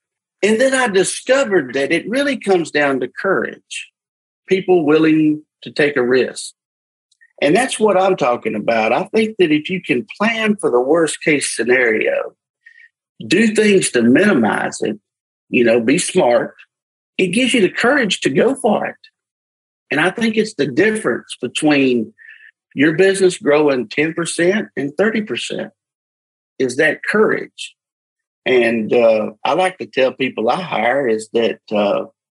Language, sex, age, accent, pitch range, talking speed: English, male, 50-69, American, 125-195 Hz, 150 wpm